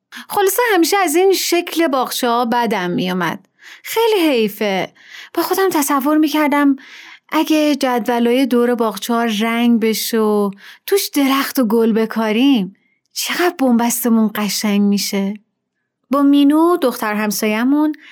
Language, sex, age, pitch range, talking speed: Persian, female, 30-49, 215-295 Hz, 115 wpm